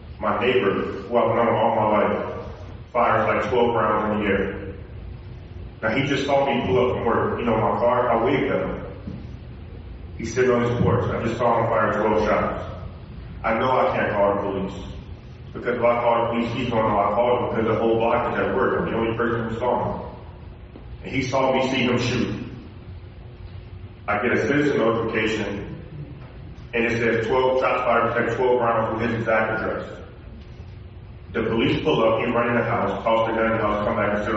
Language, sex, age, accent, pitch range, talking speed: English, male, 30-49, American, 100-115 Hz, 210 wpm